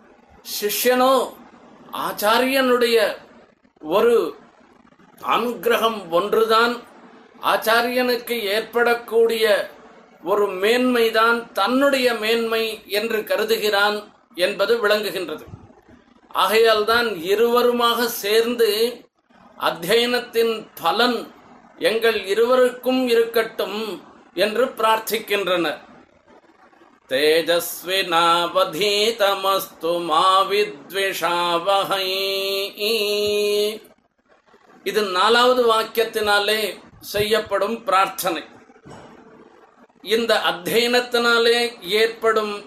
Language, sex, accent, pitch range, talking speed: Tamil, male, native, 205-240 Hz, 50 wpm